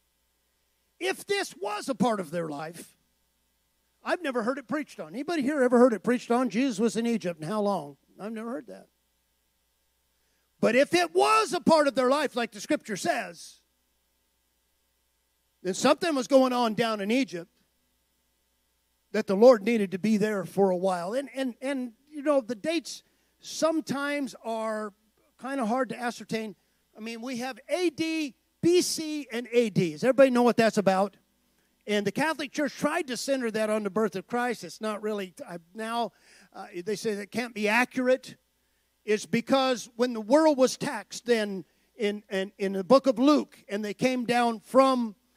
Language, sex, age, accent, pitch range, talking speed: English, male, 50-69, American, 190-260 Hz, 180 wpm